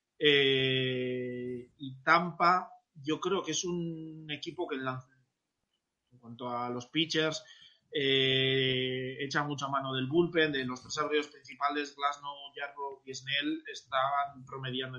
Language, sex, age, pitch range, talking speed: Spanish, male, 20-39, 130-155 Hz, 130 wpm